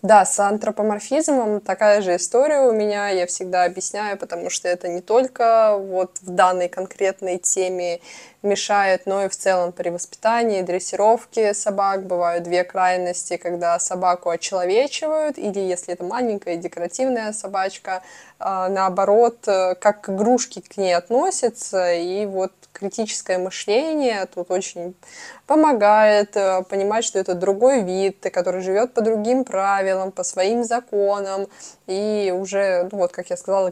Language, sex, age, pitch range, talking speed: Russian, female, 20-39, 180-215 Hz, 135 wpm